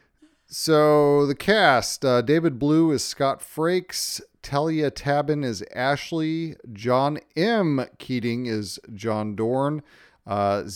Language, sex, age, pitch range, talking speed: English, male, 40-59, 120-150 Hz, 110 wpm